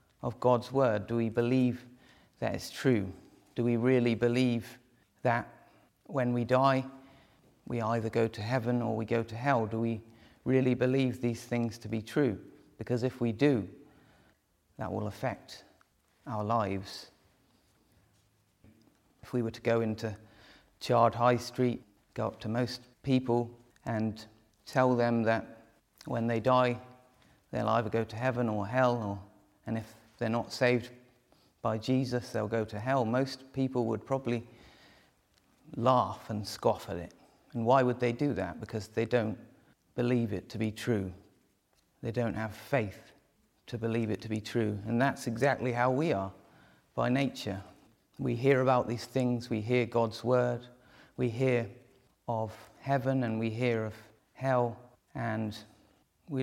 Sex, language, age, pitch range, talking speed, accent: male, English, 40-59, 110-125 Hz, 155 wpm, British